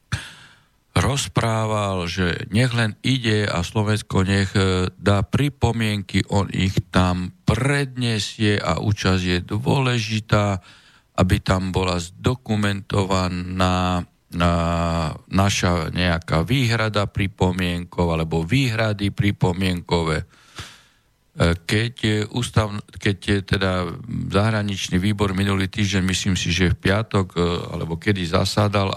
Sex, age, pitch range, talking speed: male, 50-69, 90-110 Hz, 90 wpm